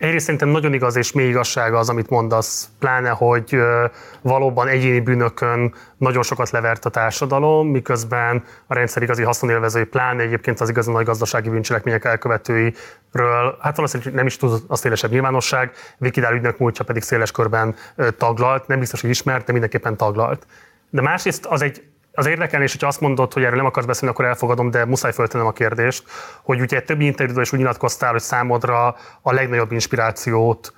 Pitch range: 115-130 Hz